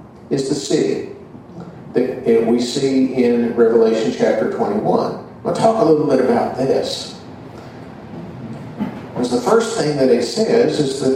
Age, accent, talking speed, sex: 50-69, American, 140 wpm, male